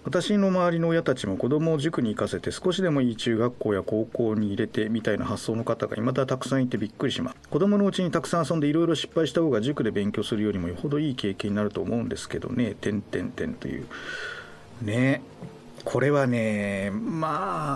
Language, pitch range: Japanese, 100-165 Hz